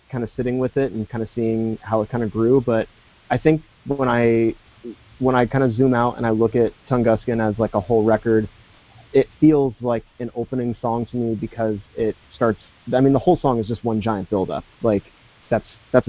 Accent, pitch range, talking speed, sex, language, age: American, 110-125 Hz, 220 wpm, male, English, 30-49